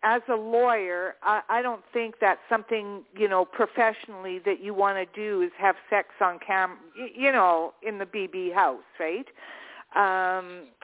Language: English